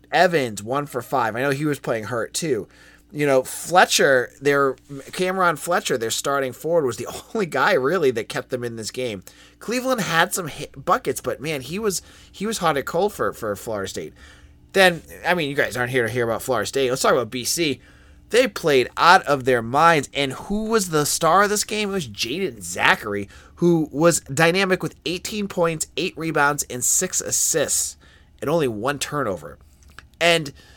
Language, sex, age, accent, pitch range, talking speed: English, male, 30-49, American, 115-170 Hz, 195 wpm